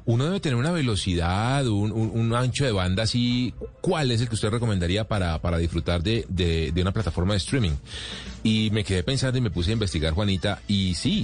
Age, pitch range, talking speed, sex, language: 40-59, 90-115 Hz, 215 wpm, male, Spanish